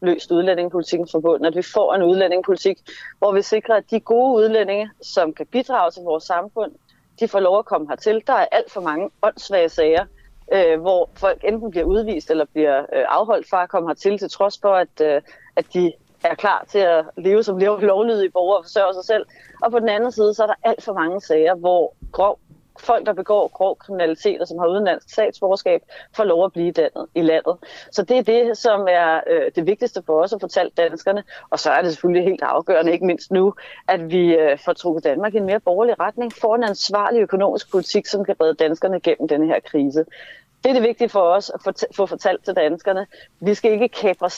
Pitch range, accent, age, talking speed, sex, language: 175-215 Hz, native, 30-49, 220 wpm, female, Danish